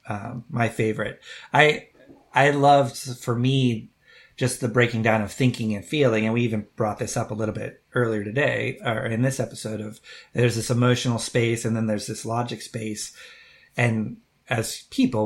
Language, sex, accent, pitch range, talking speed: English, male, American, 115-135 Hz, 175 wpm